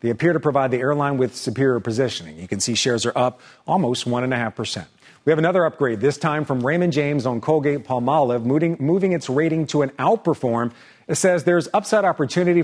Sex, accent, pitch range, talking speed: male, American, 125-160 Hz, 210 wpm